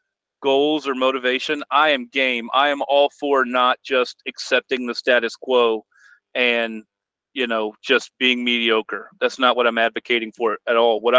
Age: 40-59